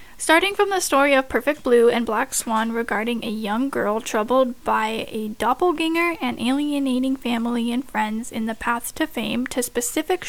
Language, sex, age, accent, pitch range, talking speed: English, female, 10-29, American, 235-290 Hz, 175 wpm